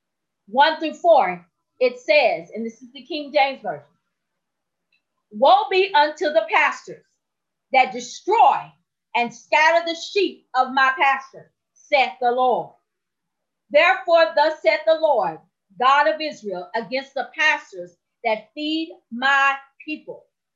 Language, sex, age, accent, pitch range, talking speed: English, female, 40-59, American, 230-320 Hz, 130 wpm